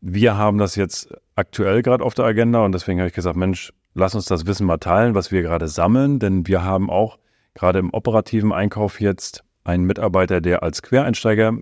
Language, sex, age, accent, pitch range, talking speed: German, male, 30-49, German, 85-105 Hz, 200 wpm